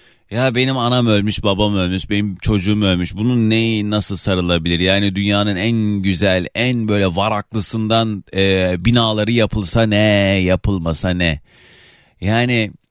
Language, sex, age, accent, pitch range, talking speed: Turkish, male, 30-49, native, 105-155 Hz, 125 wpm